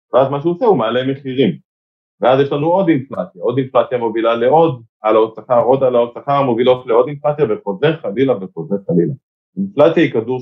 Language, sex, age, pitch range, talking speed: Hebrew, male, 30-49, 110-160 Hz, 180 wpm